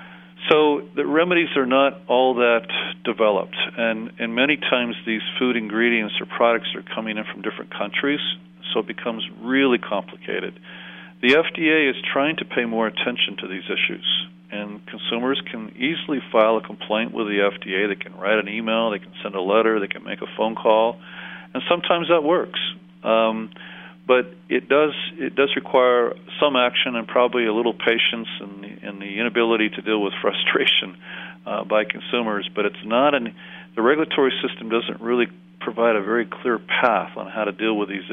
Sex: male